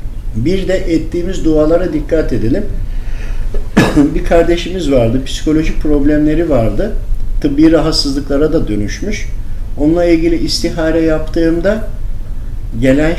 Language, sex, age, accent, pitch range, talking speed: Turkish, male, 50-69, native, 105-155 Hz, 95 wpm